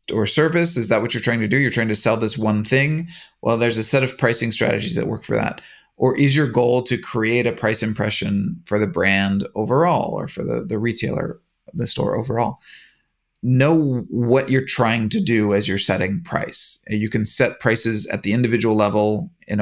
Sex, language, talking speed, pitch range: male, English, 205 wpm, 105-130 Hz